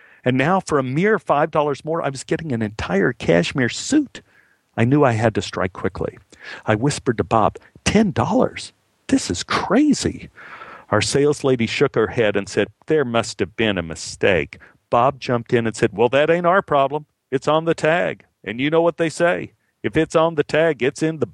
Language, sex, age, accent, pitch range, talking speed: English, male, 50-69, American, 105-150 Hz, 200 wpm